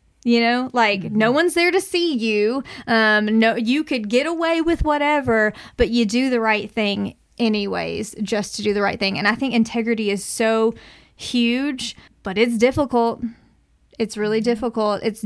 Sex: female